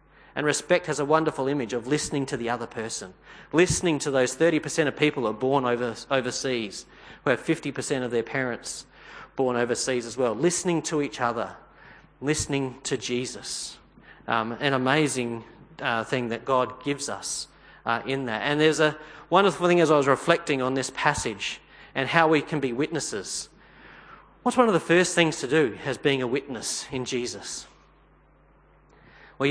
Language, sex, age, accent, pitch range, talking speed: English, male, 40-59, Australian, 125-165 Hz, 170 wpm